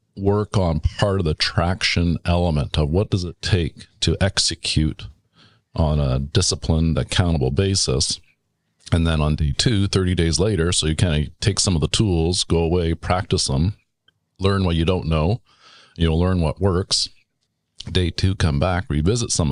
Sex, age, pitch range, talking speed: male, 50-69, 80-100 Hz, 170 wpm